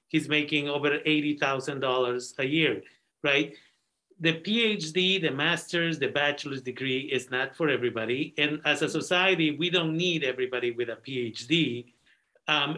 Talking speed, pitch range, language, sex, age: 140 wpm, 130-165 Hz, Spanish, male, 50-69